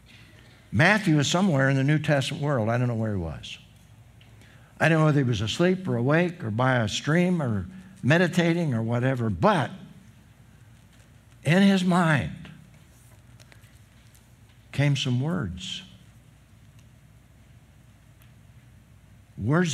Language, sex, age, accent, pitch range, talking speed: English, male, 60-79, American, 115-165 Hz, 120 wpm